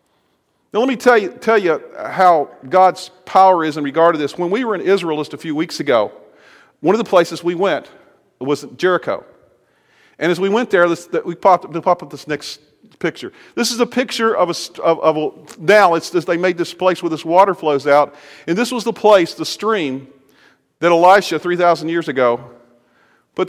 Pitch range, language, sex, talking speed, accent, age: 160-220 Hz, English, male, 210 wpm, American, 40-59